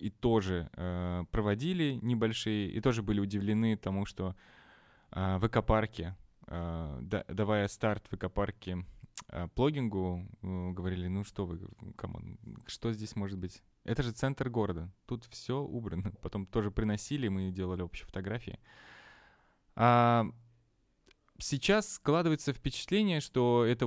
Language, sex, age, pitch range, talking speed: Russian, male, 20-39, 100-120 Hz, 130 wpm